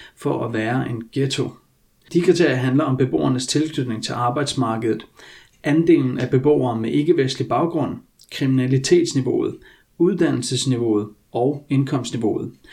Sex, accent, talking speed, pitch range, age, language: male, native, 110 wpm, 115-145 Hz, 30-49, Danish